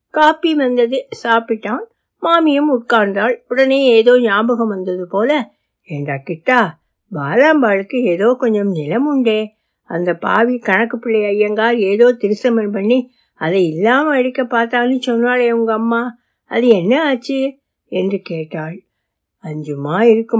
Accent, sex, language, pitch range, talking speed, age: native, female, Tamil, 185-240 Hz, 120 wpm, 60-79